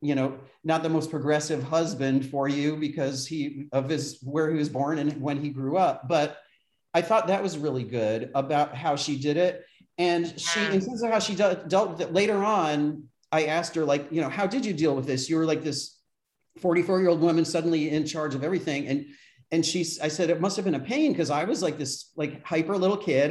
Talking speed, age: 230 wpm, 40-59